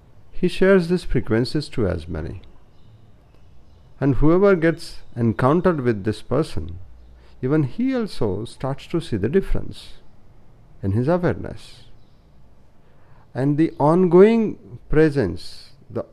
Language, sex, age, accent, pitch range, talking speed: Hindi, male, 50-69, native, 105-155 Hz, 110 wpm